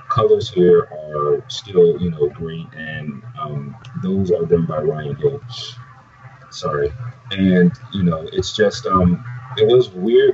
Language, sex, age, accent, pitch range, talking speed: English, male, 30-49, American, 95-145 Hz, 145 wpm